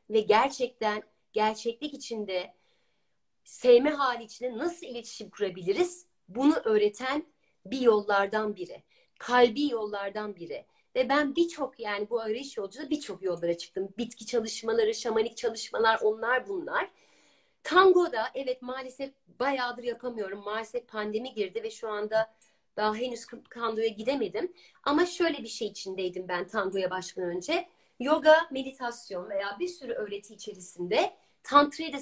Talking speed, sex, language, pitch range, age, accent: 125 wpm, female, Turkish, 215-305 Hz, 40-59, native